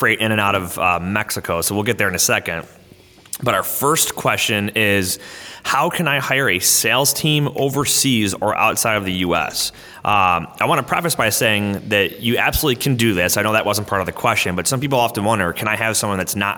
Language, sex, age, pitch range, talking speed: English, male, 30-49, 95-115 Hz, 230 wpm